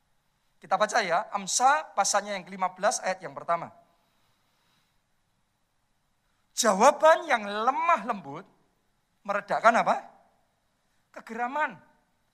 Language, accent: Indonesian, native